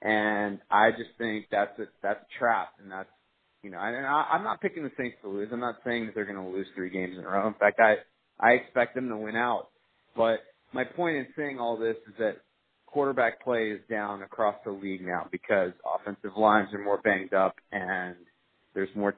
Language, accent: English, American